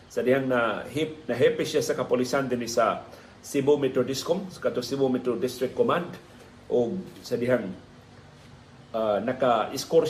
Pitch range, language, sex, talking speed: 120-140 Hz, Filipino, male, 120 wpm